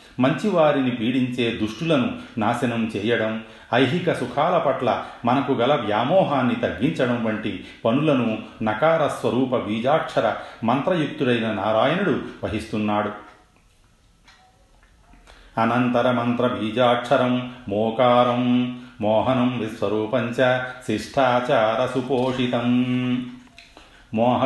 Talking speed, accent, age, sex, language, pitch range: 50 wpm, native, 40-59, male, Telugu, 110-125 Hz